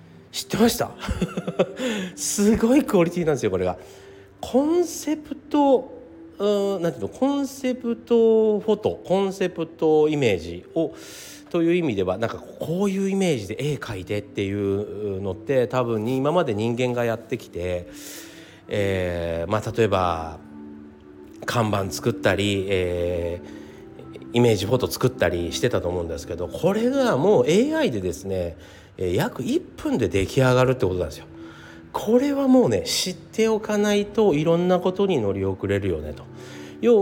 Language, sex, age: Japanese, male, 40-59